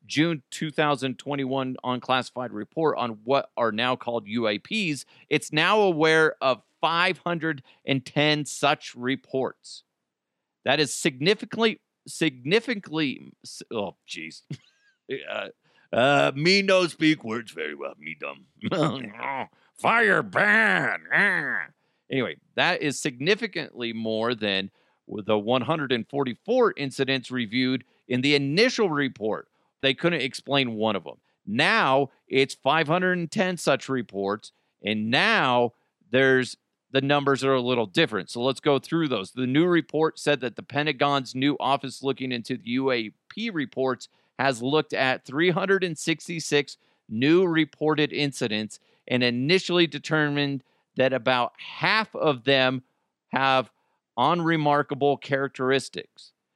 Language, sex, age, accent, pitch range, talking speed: English, male, 40-59, American, 125-160 Hz, 110 wpm